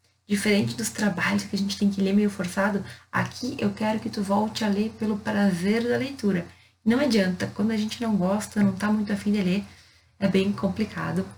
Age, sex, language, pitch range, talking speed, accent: 20-39, female, Portuguese, 195-235 Hz, 205 wpm, Brazilian